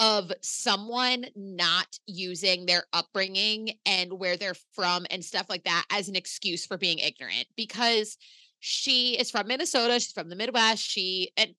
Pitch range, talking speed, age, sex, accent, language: 185-250 Hz, 160 wpm, 30-49, female, American, English